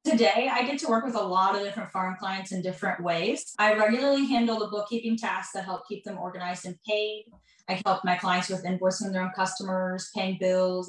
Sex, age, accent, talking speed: female, 10-29, American, 215 wpm